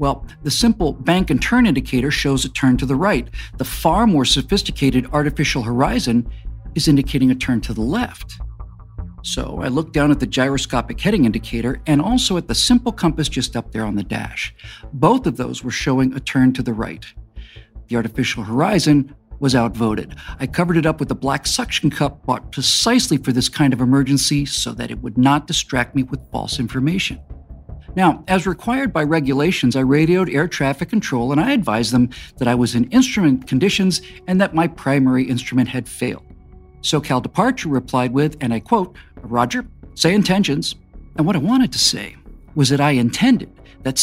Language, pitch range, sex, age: English, 120-160 Hz, male, 50-69